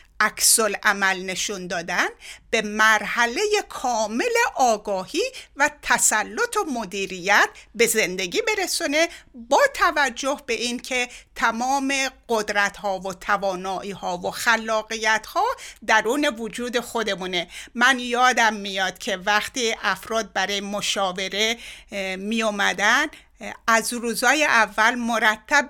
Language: Persian